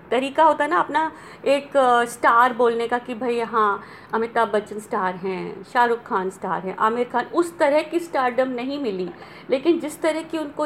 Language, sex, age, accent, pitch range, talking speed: Hindi, female, 50-69, native, 220-275 Hz, 180 wpm